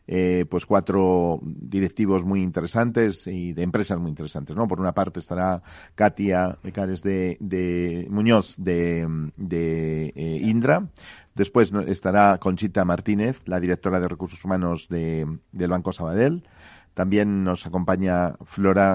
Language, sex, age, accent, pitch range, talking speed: Spanish, male, 40-59, Spanish, 90-100 Hz, 130 wpm